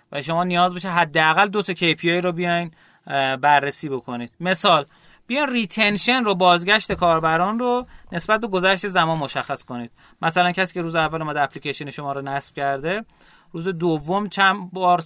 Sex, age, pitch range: male, 30-49, 150-200 Hz